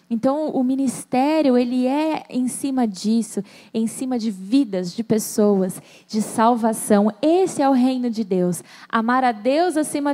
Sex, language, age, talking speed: female, Portuguese, 10-29, 155 wpm